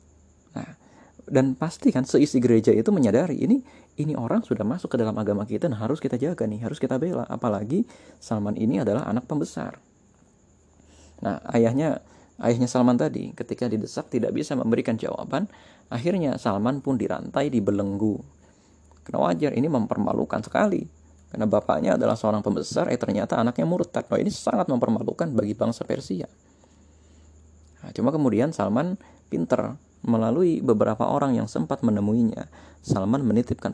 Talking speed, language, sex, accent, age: 145 wpm, Indonesian, male, native, 30-49